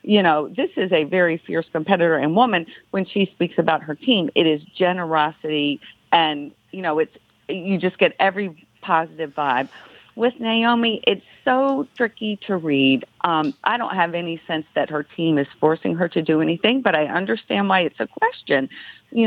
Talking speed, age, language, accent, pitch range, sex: 185 wpm, 50-69, English, American, 160-240 Hz, female